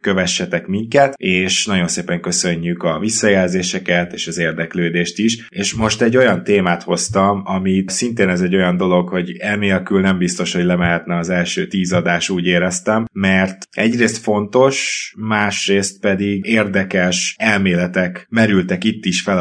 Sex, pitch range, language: male, 90-105 Hz, Hungarian